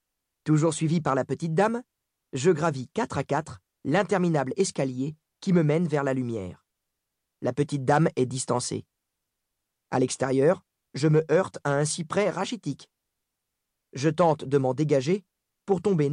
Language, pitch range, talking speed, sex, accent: French, 140-180 Hz, 150 wpm, male, French